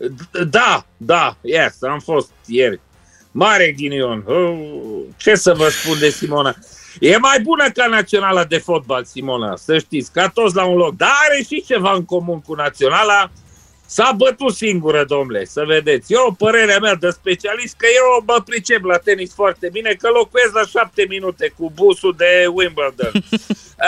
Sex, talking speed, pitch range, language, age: male, 165 wpm, 180-275 Hz, Romanian, 50-69